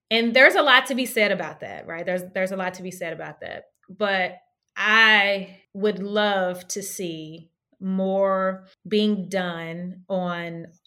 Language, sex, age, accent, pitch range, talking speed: English, female, 20-39, American, 185-250 Hz, 160 wpm